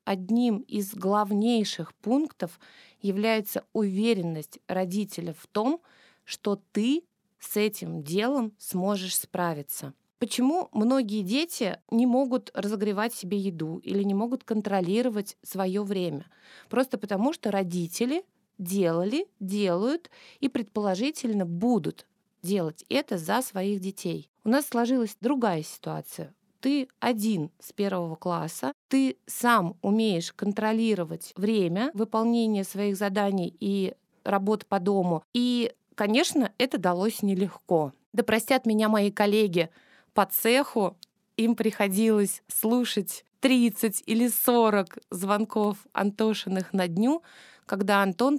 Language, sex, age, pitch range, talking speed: Russian, female, 20-39, 195-235 Hz, 110 wpm